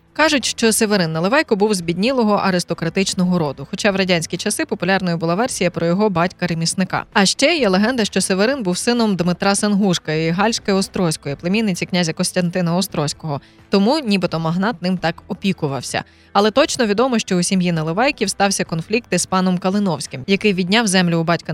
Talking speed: 165 wpm